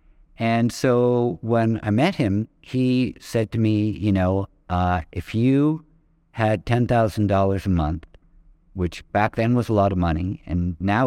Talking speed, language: 155 wpm, English